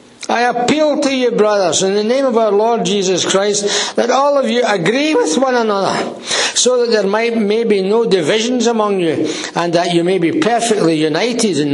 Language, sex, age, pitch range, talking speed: English, male, 60-79, 180-240 Hz, 195 wpm